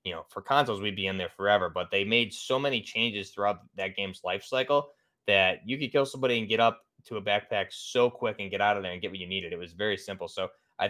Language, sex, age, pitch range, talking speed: English, male, 20-39, 100-115 Hz, 270 wpm